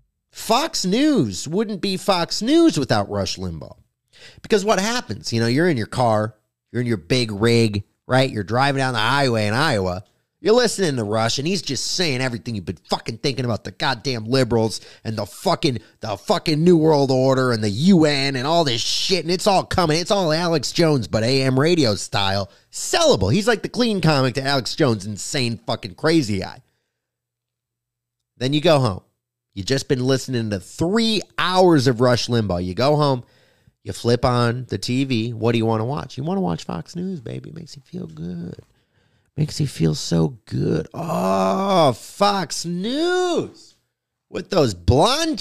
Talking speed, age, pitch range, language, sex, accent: 185 wpm, 30-49, 115-170 Hz, English, male, American